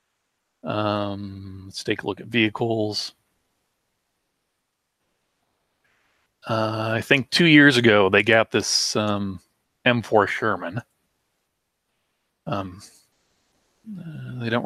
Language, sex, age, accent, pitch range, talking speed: English, male, 40-59, American, 105-125 Hz, 95 wpm